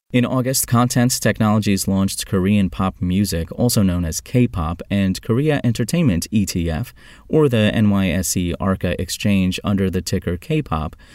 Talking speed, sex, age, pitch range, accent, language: 135 wpm, male, 30-49, 90-120 Hz, American, English